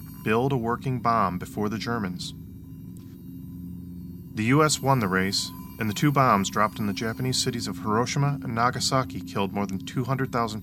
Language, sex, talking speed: English, male, 165 wpm